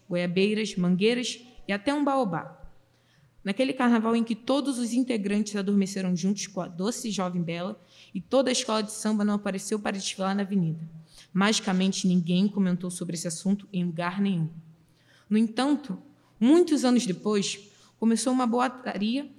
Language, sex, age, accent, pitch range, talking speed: Portuguese, female, 20-39, Brazilian, 180-230 Hz, 150 wpm